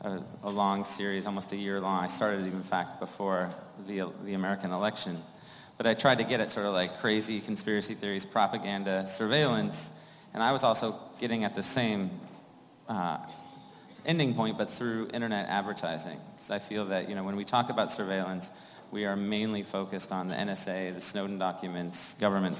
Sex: male